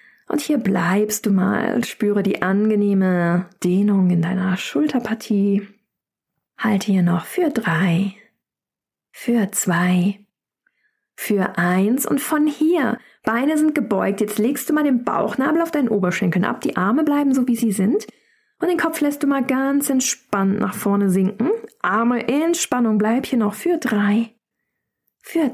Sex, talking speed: female, 150 wpm